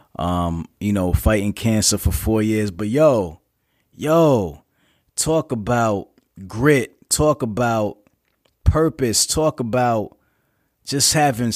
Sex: male